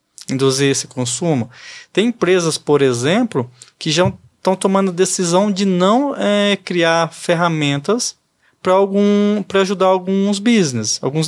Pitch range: 150-190 Hz